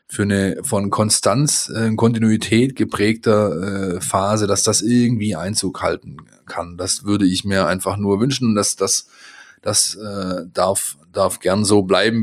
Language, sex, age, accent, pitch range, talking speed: German, male, 20-39, German, 95-115 Hz, 150 wpm